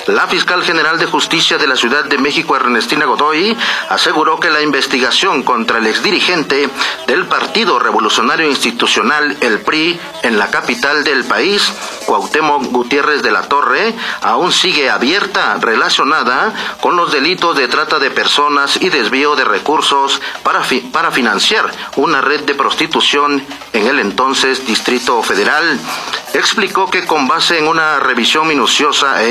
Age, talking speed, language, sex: 40-59, 145 wpm, Spanish, male